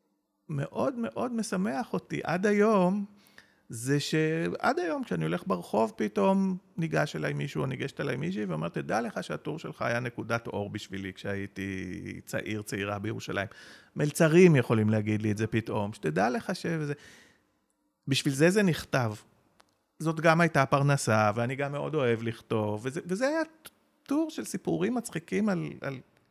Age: 40-59